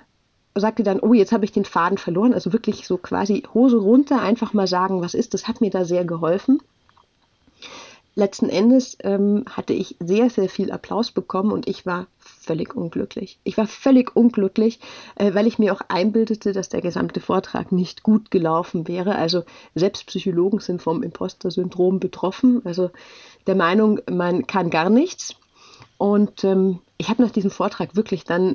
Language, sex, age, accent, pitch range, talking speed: German, female, 30-49, German, 185-225 Hz, 170 wpm